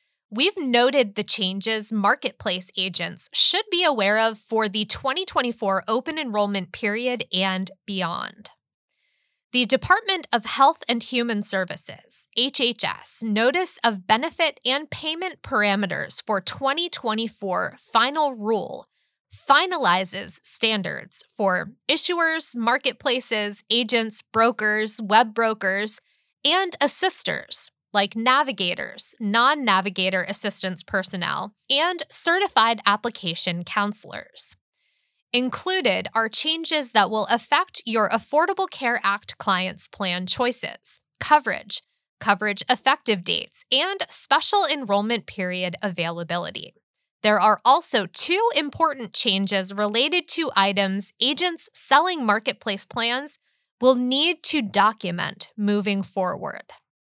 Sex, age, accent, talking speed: female, 20-39, American, 100 wpm